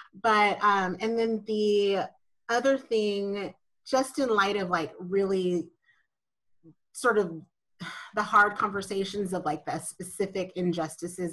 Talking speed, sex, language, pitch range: 120 wpm, female, English, 175-215 Hz